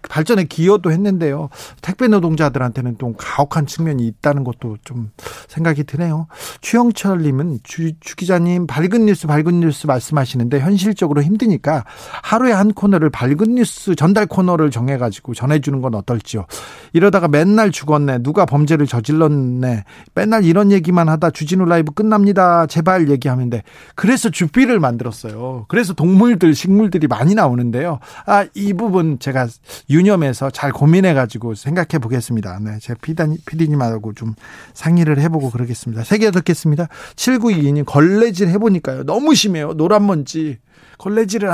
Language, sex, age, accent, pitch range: Korean, male, 40-59, native, 140-190 Hz